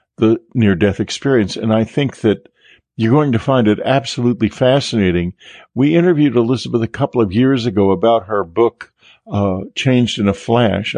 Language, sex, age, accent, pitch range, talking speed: English, male, 50-69, American, 100-130 Hz, 165 wpm